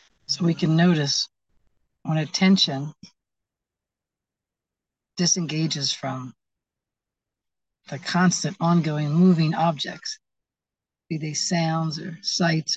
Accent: American